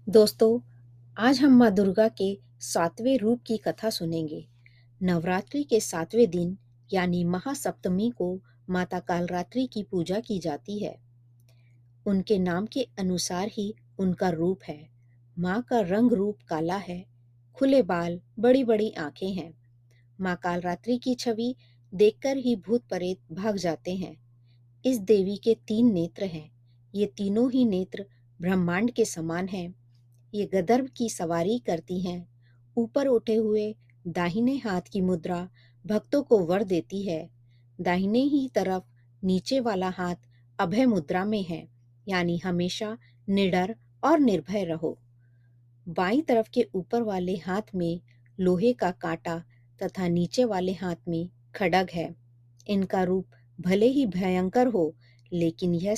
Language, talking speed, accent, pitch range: Hindi, 140 wpm, native, 160-215 Hz